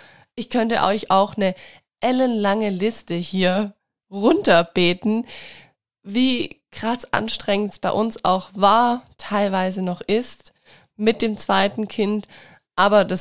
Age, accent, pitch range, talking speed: 20-39, German, 185-220 Hz, 120 wpm